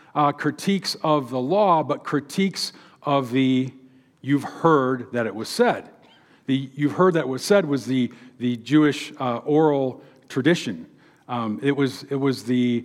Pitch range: 125-155 Hz